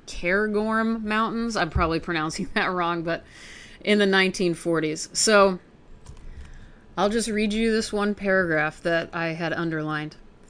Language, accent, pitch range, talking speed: English, American, 170-205 Hz, 130 wpm